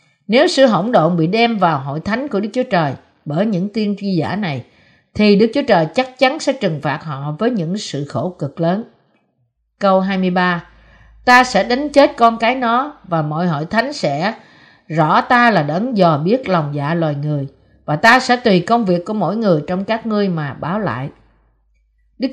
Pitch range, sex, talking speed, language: 165-230 Hz, female, 200 wpm, Vietnamese